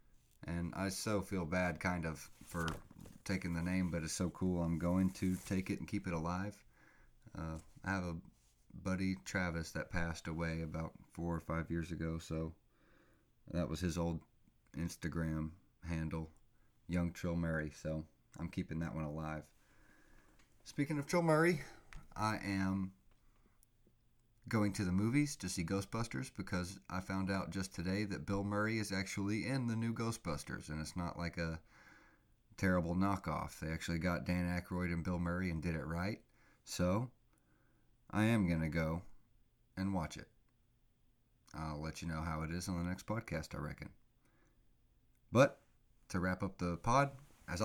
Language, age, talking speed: English, 30-49, 165 wpm